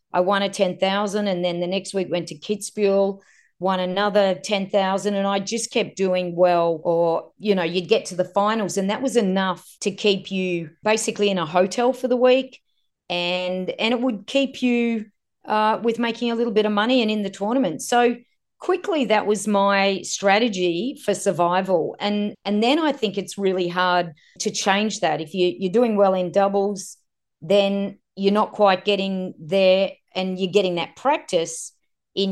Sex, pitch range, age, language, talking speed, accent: female, 180-215 Hz, 40-59, English, 190 wpm, Australian